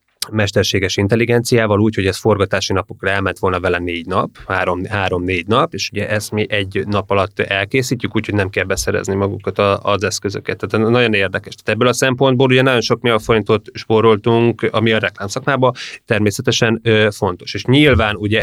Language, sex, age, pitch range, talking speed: Hungarian, male, 20-39, 100-120 Hz, 175 wpm